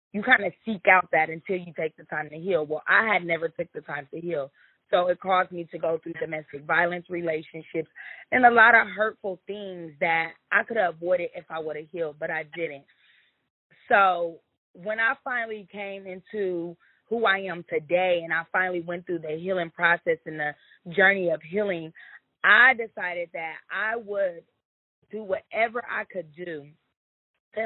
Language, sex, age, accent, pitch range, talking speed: English, female, 20-39, American, 165-205 Hz, 185 wpm